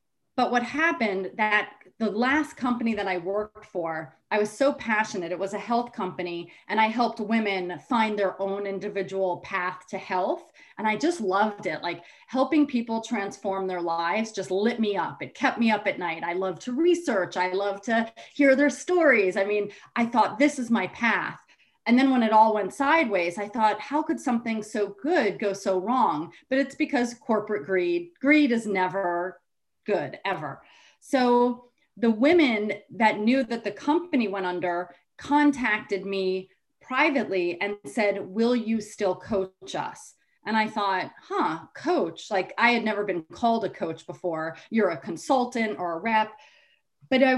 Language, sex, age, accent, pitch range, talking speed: English, female, 30-49, American, 190-250 Hz, 175 wpm